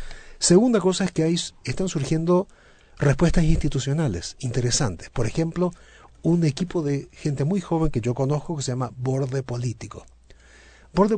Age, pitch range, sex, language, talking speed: 40-59, 125-165 Hz, male, Spanish, 140 wpm